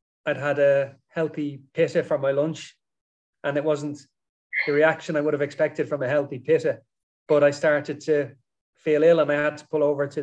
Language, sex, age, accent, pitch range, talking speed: English, male, 30-49, Irish, 140-155 Hz, 200 wpm